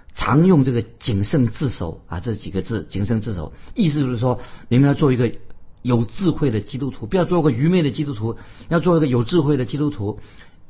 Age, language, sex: 50-69, Chinese, male